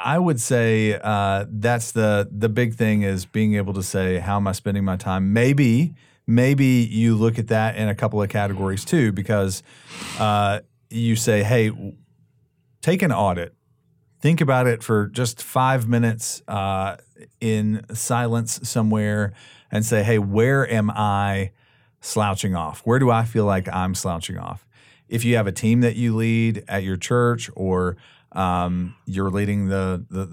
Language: English